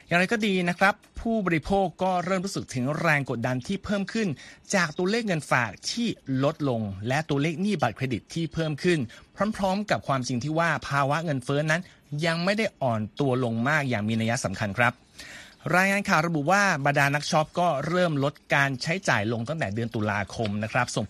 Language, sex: Thai, male